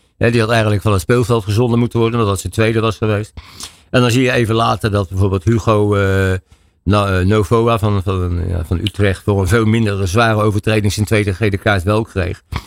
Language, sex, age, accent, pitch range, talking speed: Dutch, male, 60-79, Dutch, 95-115 Hz, 215 wpm